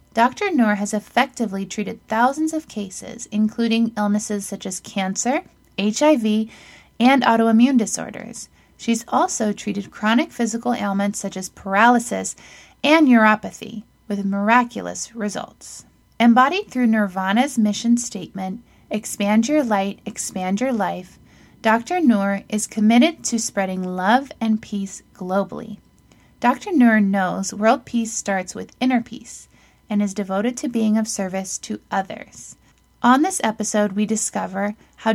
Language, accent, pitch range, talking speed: English, American, 200-245 Hz, 130 wpm